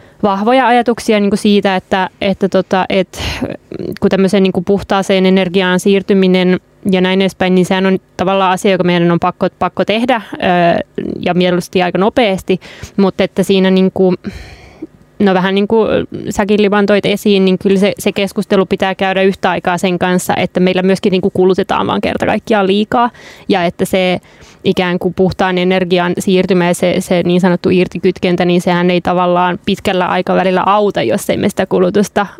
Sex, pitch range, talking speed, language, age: female, 180-195 Hz, 165 wpm, Finnish, 20-39